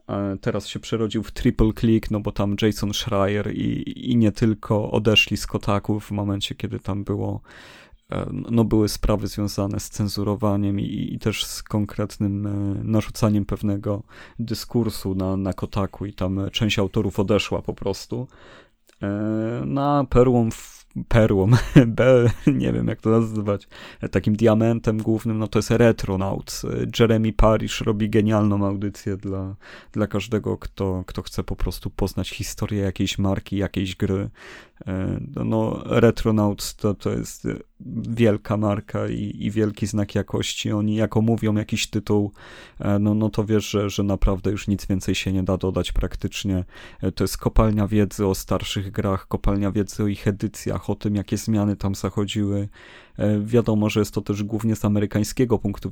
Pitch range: 100-110 Hz